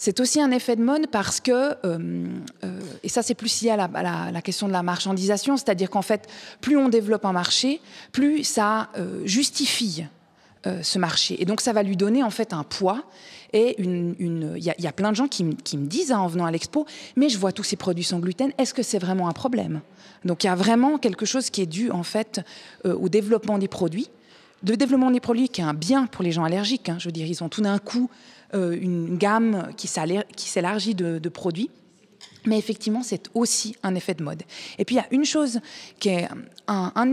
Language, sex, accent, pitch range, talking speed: French, female, French, 180-240 Hz, 240 wpm